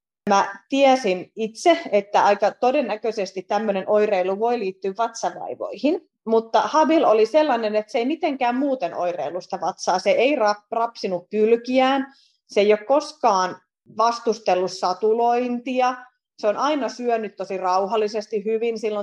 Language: Finnish